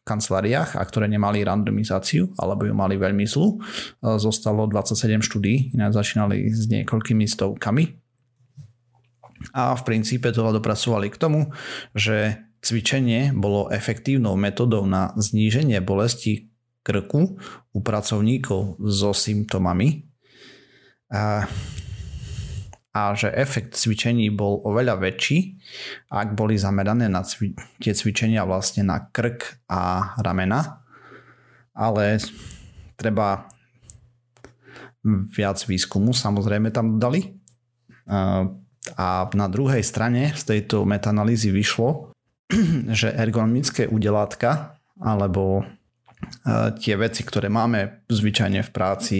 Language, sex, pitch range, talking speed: Slovak, male, 100-120 Hz, 100 wpm